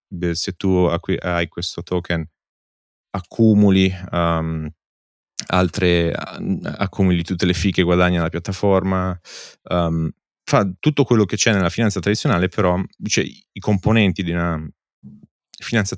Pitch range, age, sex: 85-100 Hz, 30-49, male